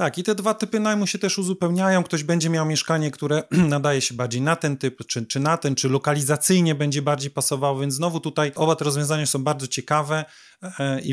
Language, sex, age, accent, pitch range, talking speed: Polish, male, 30-49, native, 135-165 Hz, 210 wpm